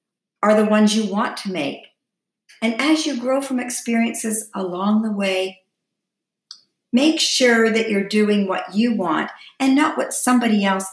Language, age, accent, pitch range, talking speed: English, 50-69, American, 185-255 Hz, 160 wpm